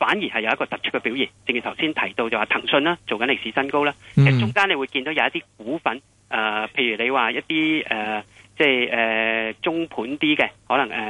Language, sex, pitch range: Chinese, male, 115-175 Hz